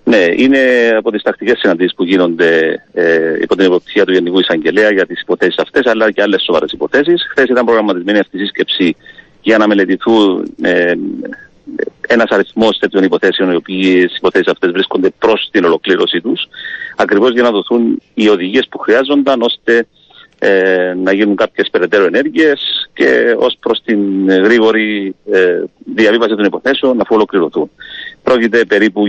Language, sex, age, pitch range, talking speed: Greek, male, 40-59, 95-140 Hz, 155 wpm